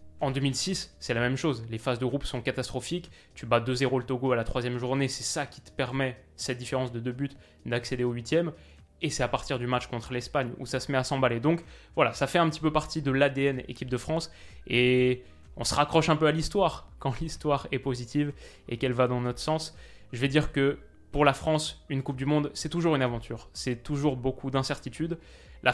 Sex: male